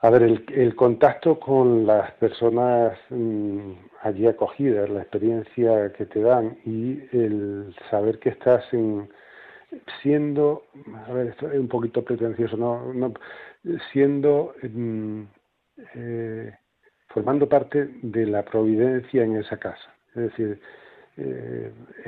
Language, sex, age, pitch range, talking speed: Spanish, male, 50-69, 110-140 Hz, 125 wpm